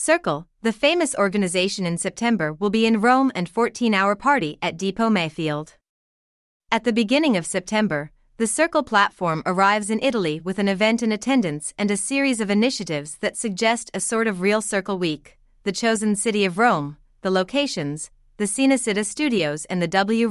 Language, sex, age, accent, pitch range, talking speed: English, female, 30-49, American, 175-230 Hz, 170 wpm